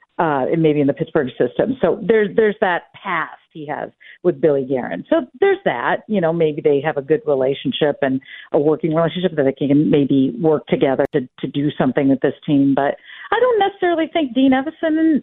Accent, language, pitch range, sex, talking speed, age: American, English, 155-250 Hz, female, 210 wpm, 50-69